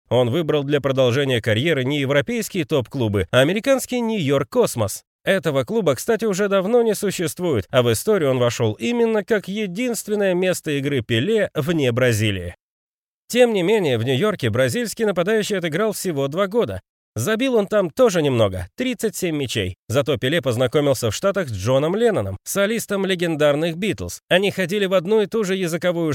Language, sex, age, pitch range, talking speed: Russian, male, 30-49, 130-210 Hz, 155 wpm